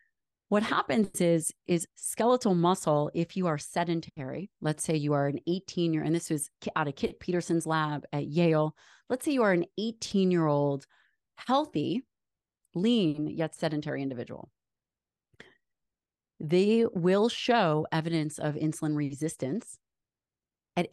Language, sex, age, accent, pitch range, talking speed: English, female, 30-49, American, 145-175 Hz, 140 wpm